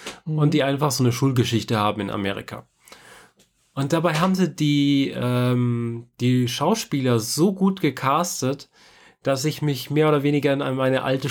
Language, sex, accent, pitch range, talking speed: German, male, German, 125-150 Hz, 155 wpm